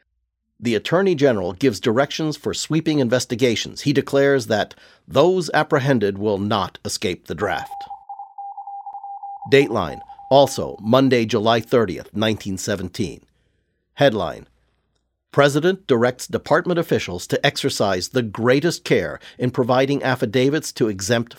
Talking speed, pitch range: 110 wpm, 110-155 Hz